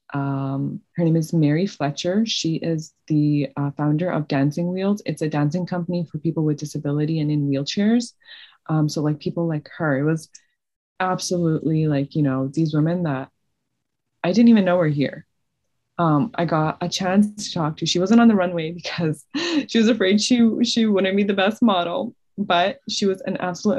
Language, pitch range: English, 150-185 Hz